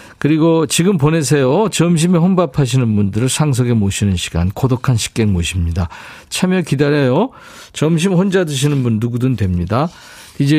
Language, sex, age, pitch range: Korean, male, 40-59, 105-155 Hz